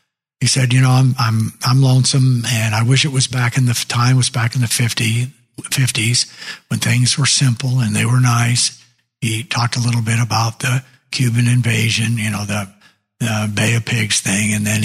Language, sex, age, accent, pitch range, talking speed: English, male, 60-79, American, 110-130 Hz, 205 wpm